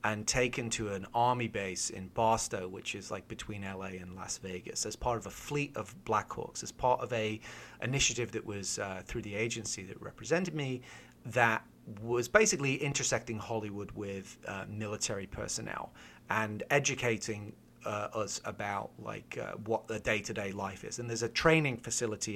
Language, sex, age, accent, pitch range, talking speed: English, male, 30-49, British, 100-120 Hz, 170 wpm